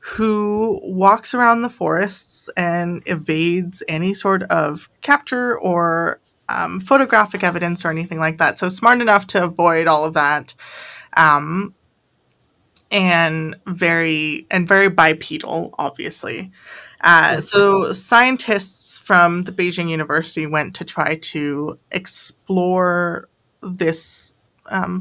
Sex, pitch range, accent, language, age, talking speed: female, 165-195 Hz, American, English, 20-39, 115 wpm